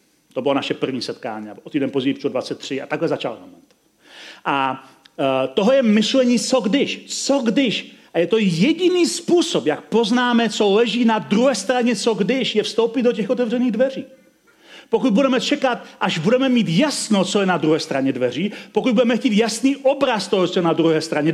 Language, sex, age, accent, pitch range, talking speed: Czech, male, 40-59, native, 175-245 Hz, 185 wpm